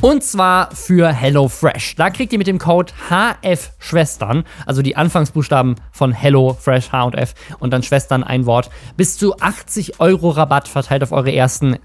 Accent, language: German, German